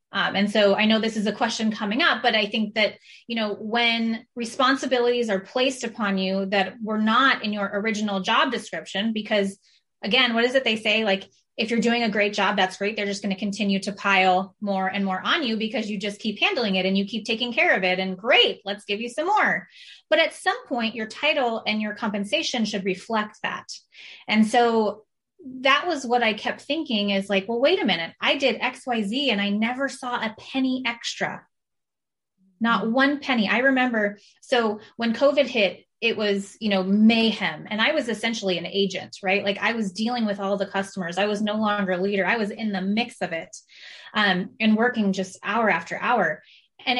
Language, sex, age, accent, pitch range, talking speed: English, female, 20-39, American, 200-245 Hz, 215 wpm